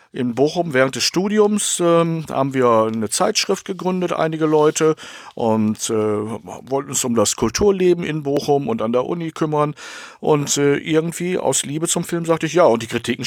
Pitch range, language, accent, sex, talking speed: 115-160 Hz, German, German, male, 180 wpm